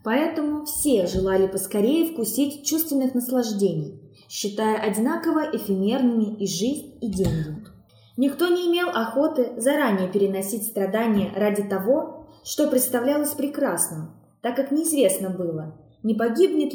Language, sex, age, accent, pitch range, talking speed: Russian, female, 20-39, native, 190-270 Hz, 115 wpm